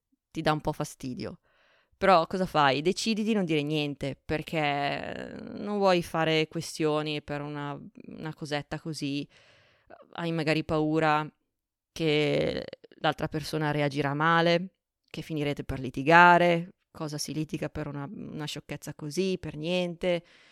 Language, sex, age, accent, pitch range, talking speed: Italian, female, 20-39, native, 155-190 Hz, 130 wpm